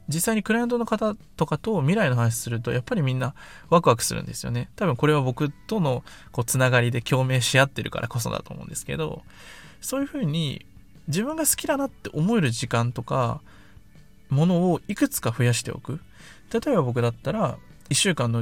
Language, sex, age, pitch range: Japanese, male, 20-39, 125-205 Hz